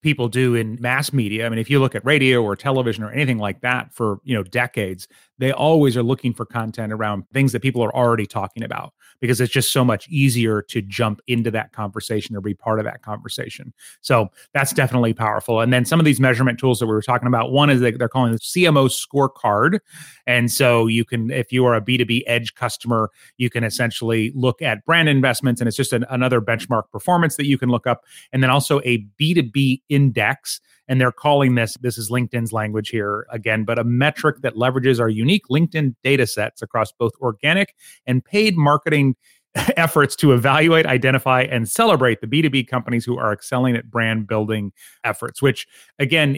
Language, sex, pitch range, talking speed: English, male, 115-135 Hz, 205 wpm